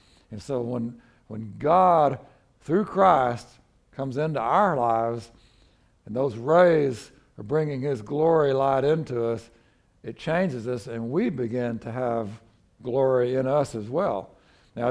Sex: male